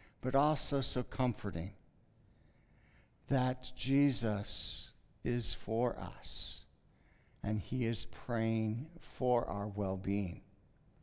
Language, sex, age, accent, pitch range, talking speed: English, male, 60-79, American, 105-150 Hz, 85 wpm